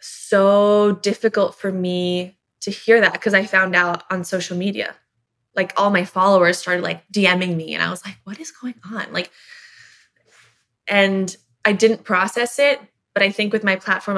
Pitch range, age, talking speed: 175-200 Hz, 20-39, 180 wpm